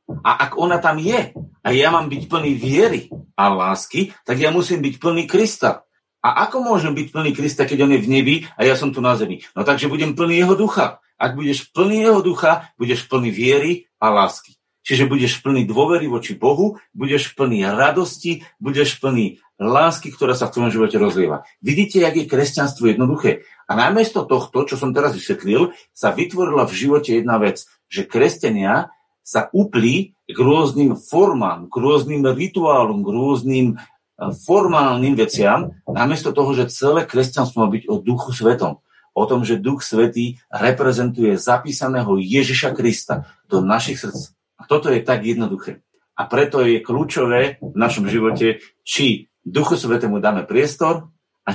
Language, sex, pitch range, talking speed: Slovak, male, 125-165 Hz, 165 wpm